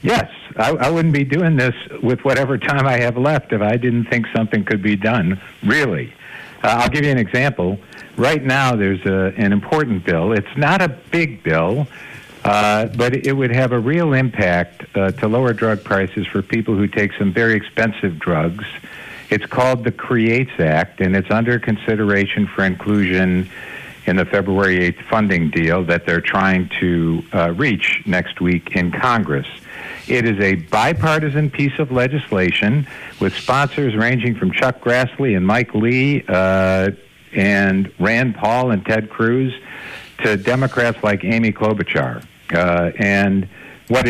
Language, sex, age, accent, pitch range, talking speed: English, male, 60-79, American, 95-125 Hz, 160 wpm